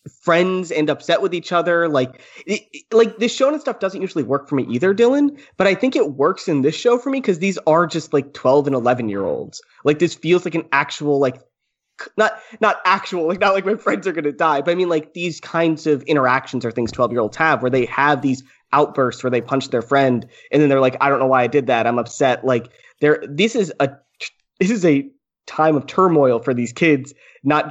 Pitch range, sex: 125-160 Hz, male